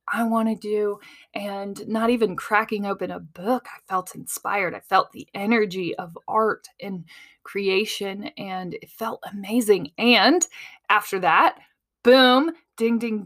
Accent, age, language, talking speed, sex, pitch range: American, 20-39, English, 145 wpm, female, 190-235 Hz